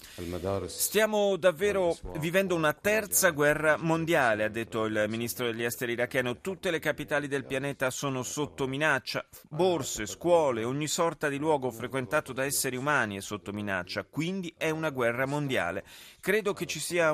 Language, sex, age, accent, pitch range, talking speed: Italian, male, 30-49, native, 110-150 Hz, 155 wpm